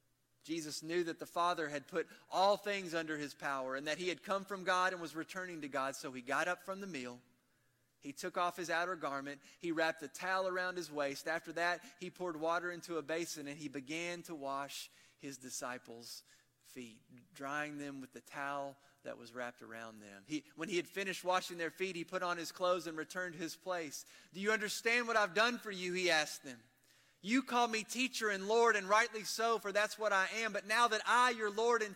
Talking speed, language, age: 225 wpm, English, 30-49